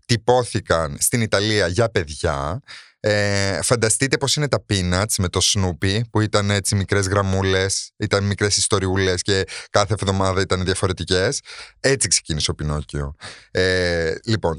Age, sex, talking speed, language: 30-49, male, 135 wpm, Greek